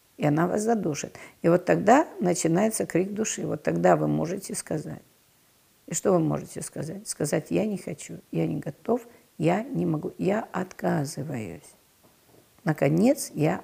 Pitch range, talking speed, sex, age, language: 145-185 Hz, 150 wpm, female, 50-69, Russian